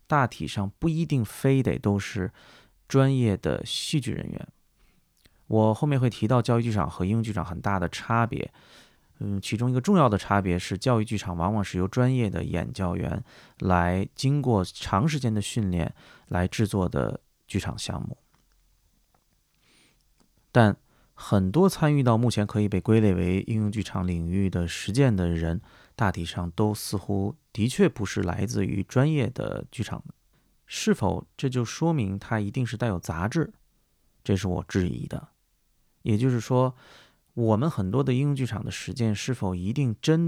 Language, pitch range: Chinese, 95-120 Hz